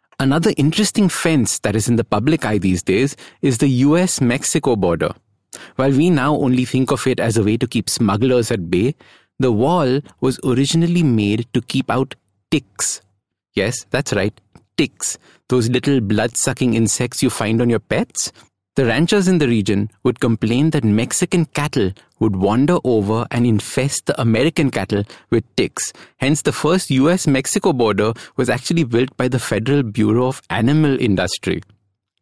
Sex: male